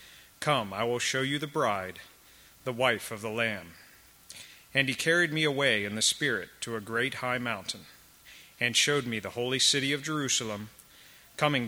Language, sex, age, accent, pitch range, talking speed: English, male, 40-59, American, 110-135 Hz, 175 wpm